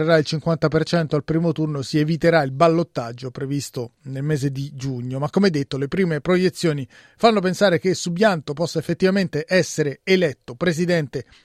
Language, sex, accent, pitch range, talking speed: Italian, male, native, 145-185 Hz, 150 wpm